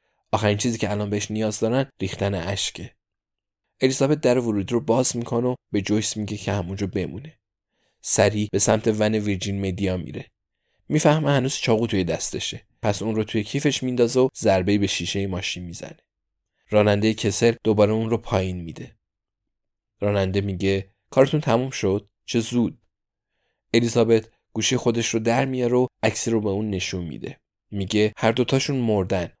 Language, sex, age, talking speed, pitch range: Persian, male, 20-39, 150 wpm, 100-115 Hz